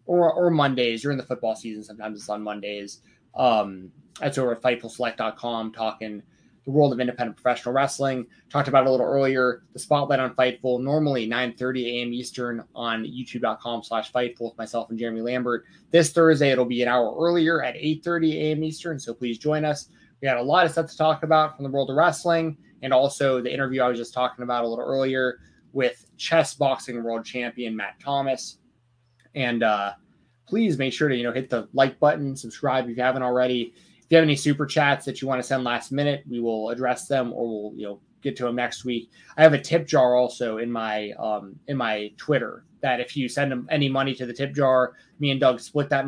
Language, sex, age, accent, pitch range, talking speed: English, male, 20-39, American, 120-140 Hz, 215 wpm